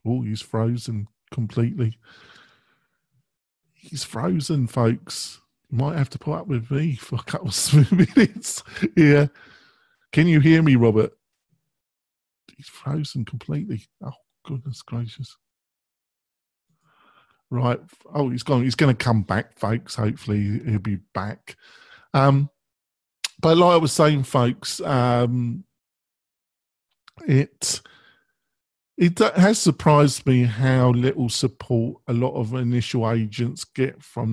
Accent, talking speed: British, 120 wpm